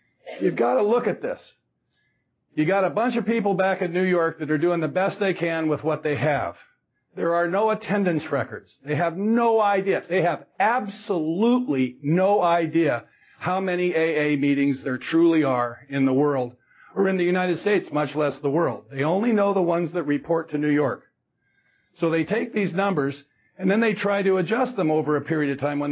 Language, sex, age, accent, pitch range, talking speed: English, male, 50-69, American, 150-200 Hz, 205 wpm